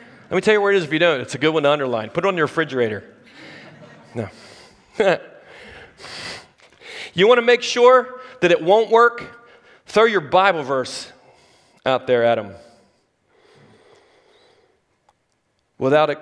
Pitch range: 125-185 Hz